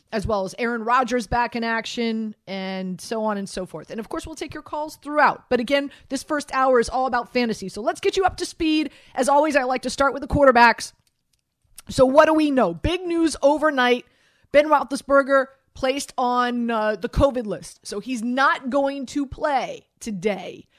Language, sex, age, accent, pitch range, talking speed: English, female, 30-49, American, 220-280 Hz, 200 wpm